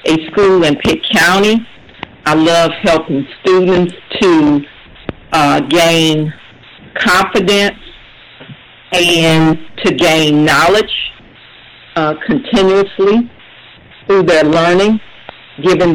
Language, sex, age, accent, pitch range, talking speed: English, female, 50-69, American, 155-185 Hz, 85 wpm